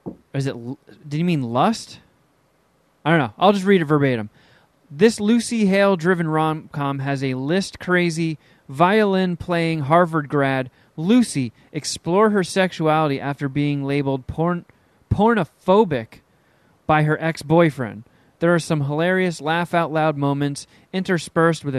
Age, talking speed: 30-49, 120 wpm